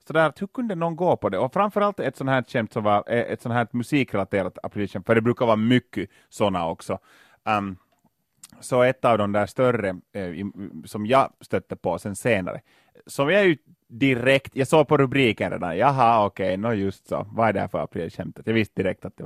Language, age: Swedish, 30-49